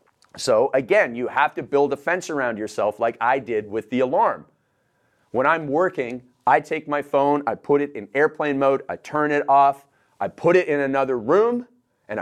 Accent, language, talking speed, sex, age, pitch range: American, English, 195 wpm, male, 30-49, 125-165 Hz